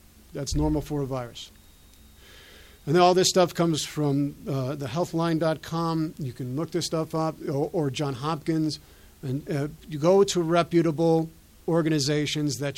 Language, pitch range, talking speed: English, 145-185 Hz, 155 wpm